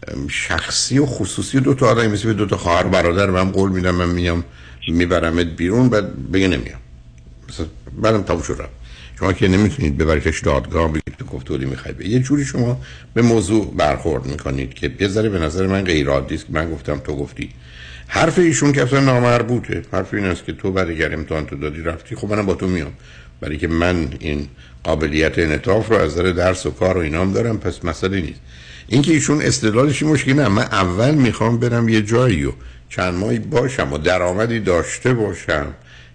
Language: Persian